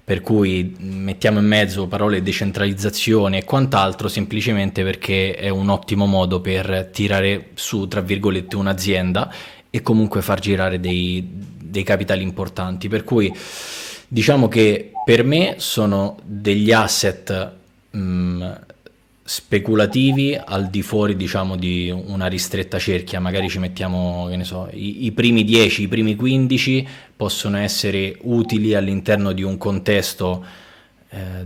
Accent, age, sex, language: native, 20-39, male, Italian